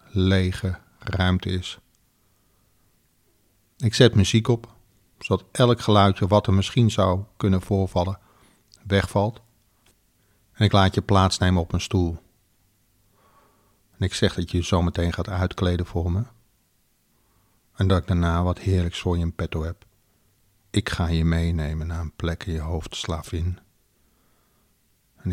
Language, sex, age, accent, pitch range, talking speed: Dutch, male, 50-69, Dutch, 90-105 Hz, 140 wpm